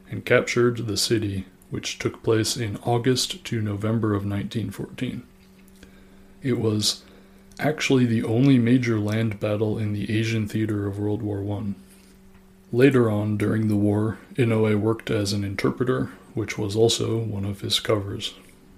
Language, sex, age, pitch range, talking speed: English, male, 20-39, 100-115 Hz, 145 wpm